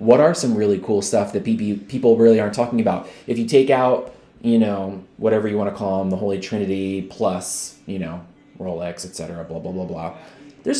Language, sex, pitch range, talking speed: English, male, 110-135 Hz, 210 wpm